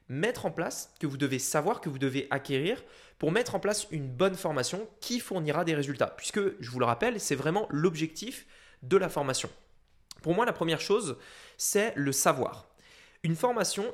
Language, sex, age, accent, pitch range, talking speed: French, male, 20-39, French, 145-205 Hz, 185 wpm